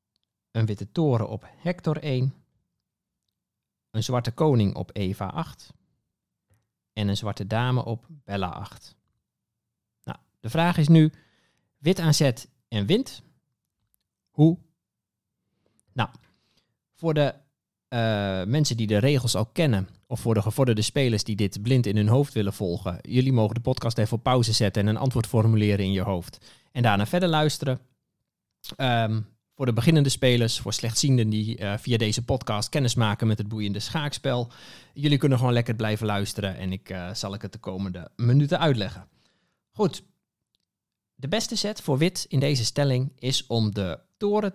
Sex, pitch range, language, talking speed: male, 105-140 Hz, Dutch, 160 wpm